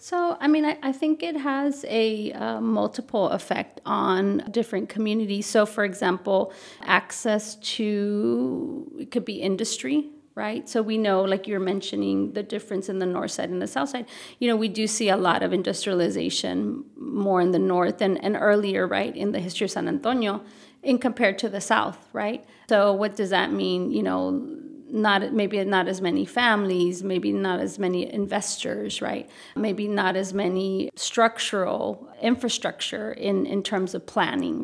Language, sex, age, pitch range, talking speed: English, female, 30-49, 190-225 Hz, 175 wpm